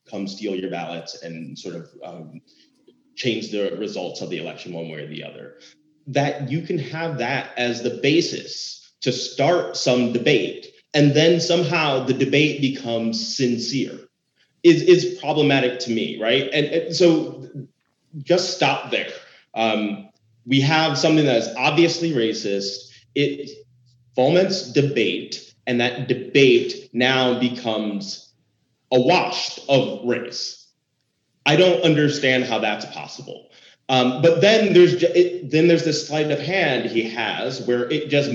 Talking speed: 145 wpm